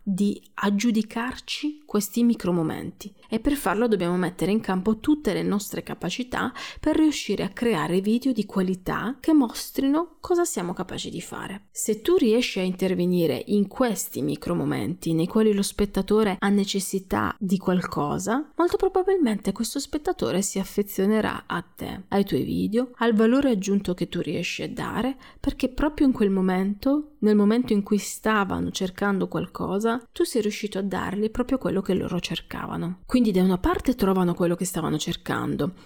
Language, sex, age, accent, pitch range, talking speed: Italian, female, 30-49, native, 190-250 Hz, 160 wpm